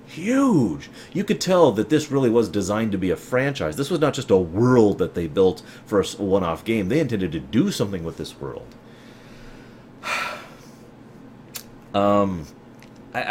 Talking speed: 160 wpm